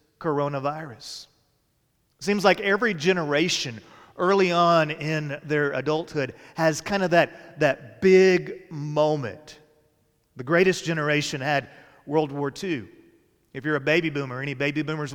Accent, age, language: American, 40-59, English